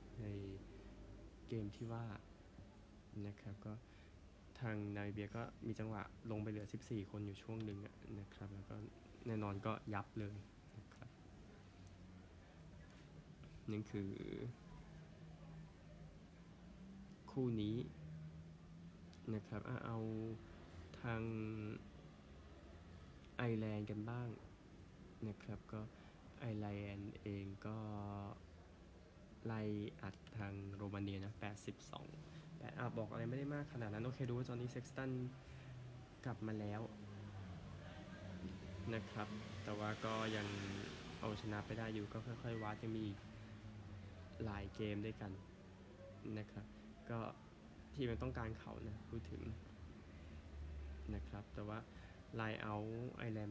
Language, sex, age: Thai, male, 20-39